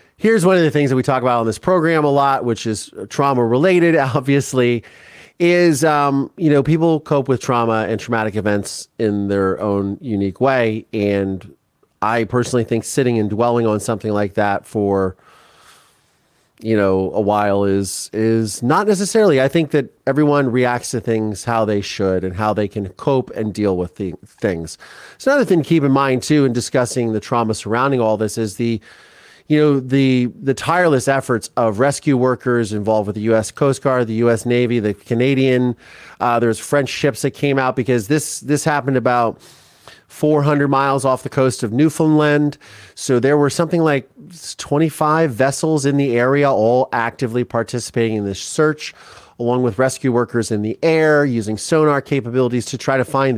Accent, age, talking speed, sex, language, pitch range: American, 30-49, 180 wpm, male, English, 110-140 Hz